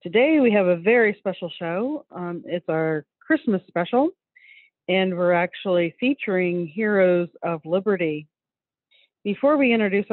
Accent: American